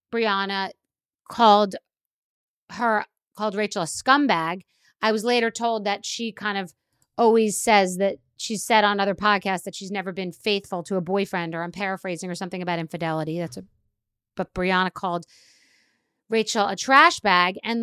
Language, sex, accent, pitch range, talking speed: English, female, American, 190-235 Hz, 160 wpm